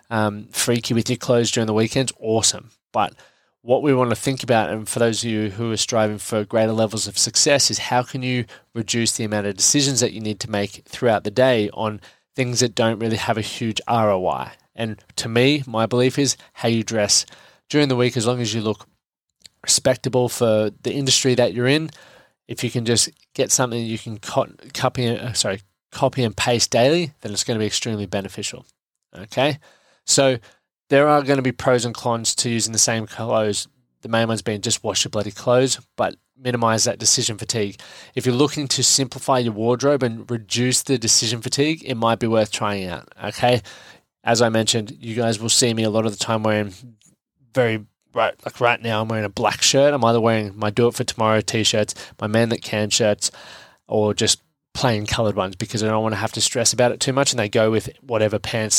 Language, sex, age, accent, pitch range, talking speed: English, male, 20-39, Australian, 110-125 Hz, 210 wpm